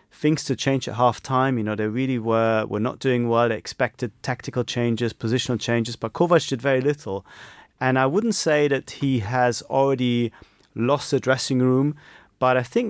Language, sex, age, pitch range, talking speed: English, male, 30-49, 110-135 Hz, 190 wpm